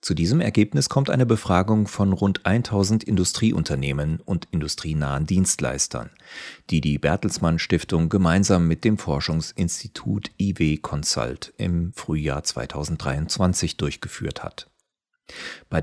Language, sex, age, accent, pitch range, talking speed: German, male, 40-59, German, 80-100 Hz, 110 wpm